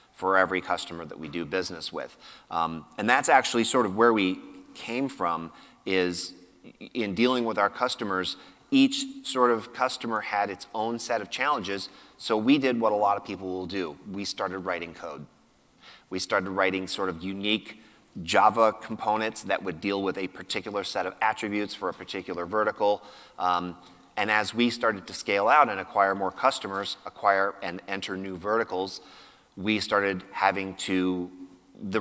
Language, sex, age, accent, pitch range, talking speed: English, male, 30-49, American, 95-110 Hz, 170 wpm